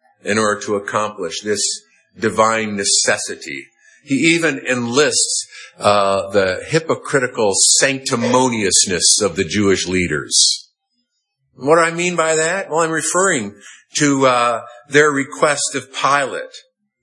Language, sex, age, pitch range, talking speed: English, male, 50-69, 130-180 Hz, 115 wpm